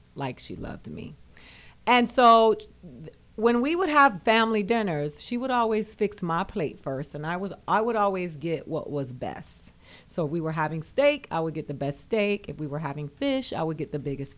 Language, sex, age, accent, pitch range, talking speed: English, female, 40-59, American, 150-220 Hz, 210 wpm